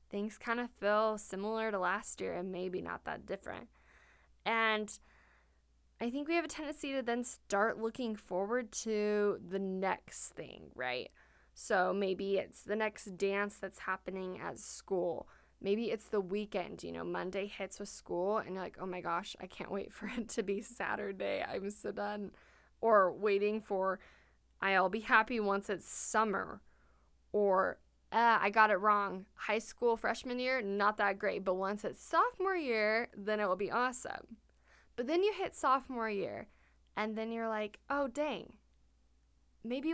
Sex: female